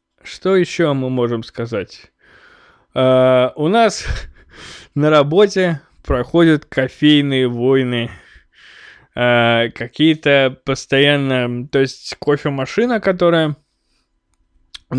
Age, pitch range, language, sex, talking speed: 20-39, 125-145 Hz, Russian, male, 75 wpm